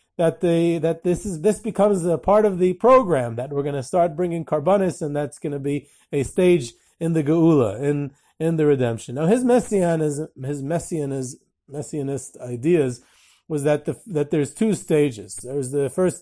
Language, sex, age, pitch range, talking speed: English, male, 40-59, 140-190 Hz, 185 wpm